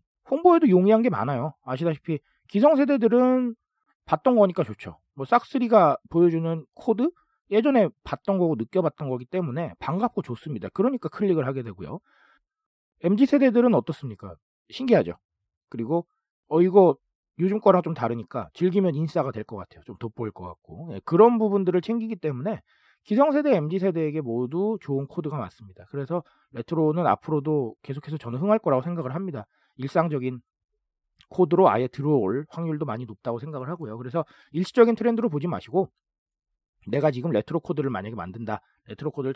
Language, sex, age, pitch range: Korean, male, 40-59, 120-195 Hz